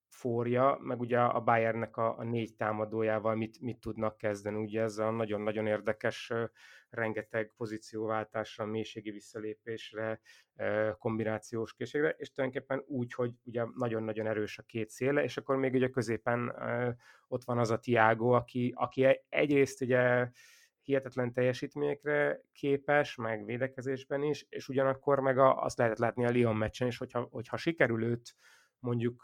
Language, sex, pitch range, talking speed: Hungarian, male, 110-130 Hz, 140 wpm